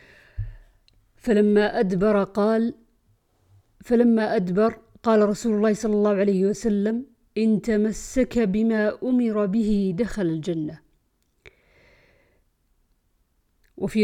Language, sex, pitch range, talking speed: Arabic, female, 170-210 Hz, 85 wpm